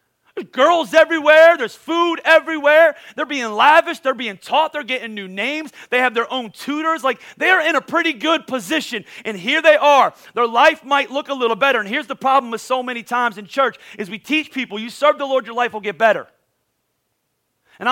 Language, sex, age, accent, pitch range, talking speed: English, male, 40-59, American, 230-290 Hz, 215 wpm